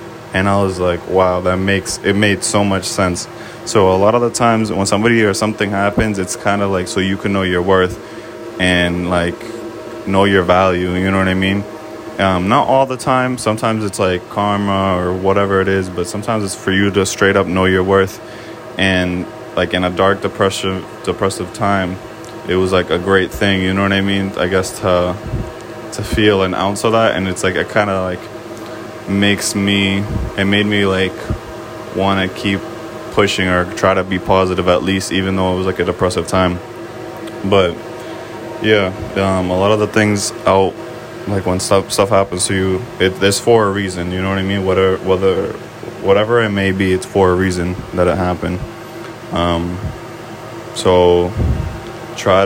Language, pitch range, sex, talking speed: English, 90-100 Hz, male, 195 wpm